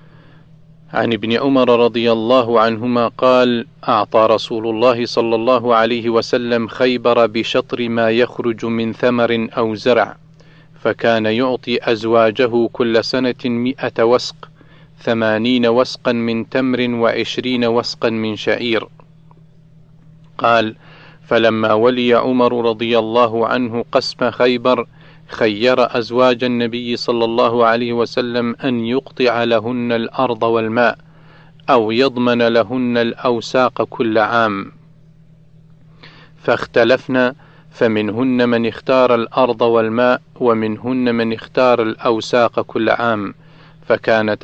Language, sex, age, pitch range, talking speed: Arabic, male, 40-59, 115-135 Hz, 105 wpm